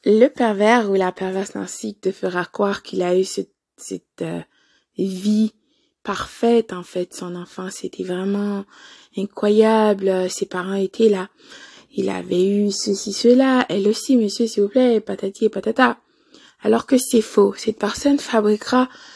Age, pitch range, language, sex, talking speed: 20-39, 200-255 Hz, French, female, 155 wpm